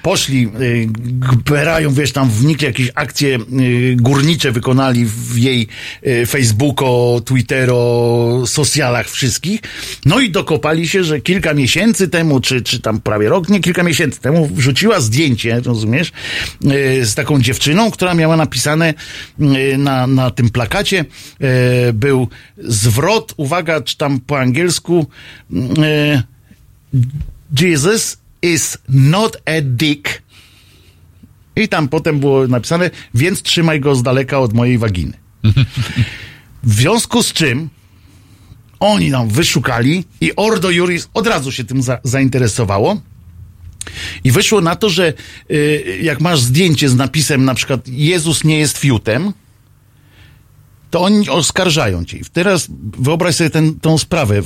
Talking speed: 125 wpm